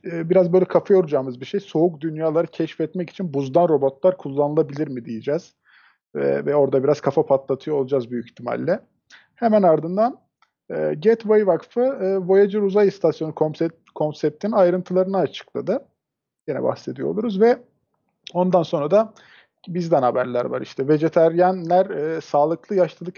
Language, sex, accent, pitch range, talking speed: Turkish, male, native, 140-180 Hz, 130 wpm